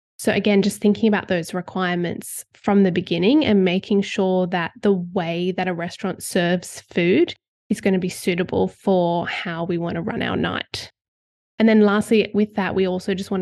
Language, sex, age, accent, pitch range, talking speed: English, female, 20-39, Australian, 180-215 Hz, 190 wpm